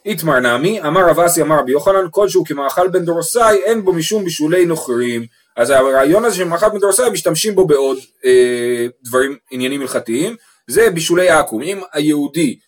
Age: 30-49